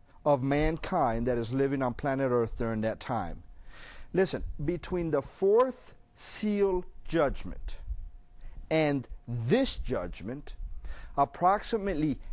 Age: 50-69